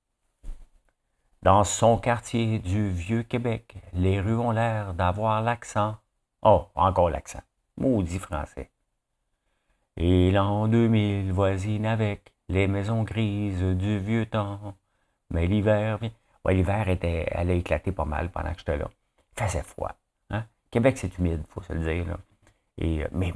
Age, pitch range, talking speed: 60-79, 85-105 Hz, 145 wpm